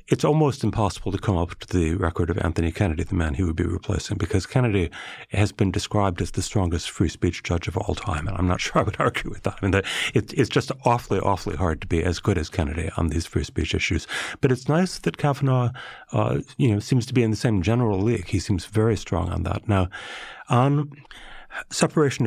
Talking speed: 220 wpm